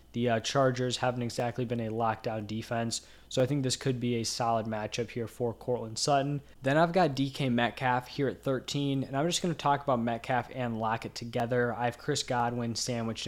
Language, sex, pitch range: English, male, 120-140 Hz